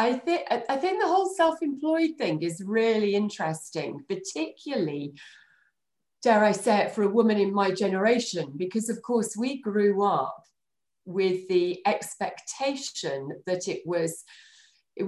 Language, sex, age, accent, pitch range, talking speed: English, female, 40-59, British, 165-230 Hz, 140 wpm